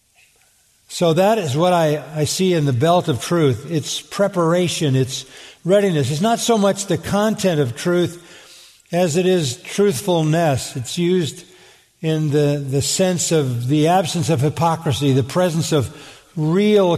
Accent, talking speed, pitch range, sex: American, 150 wpm, 140-170 Hz, male